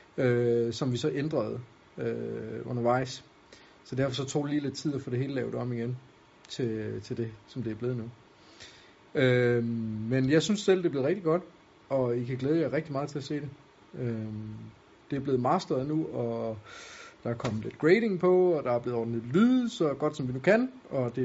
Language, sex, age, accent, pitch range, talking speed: Danish, male, 30-49, native, 120-150 Hz, 220 wpm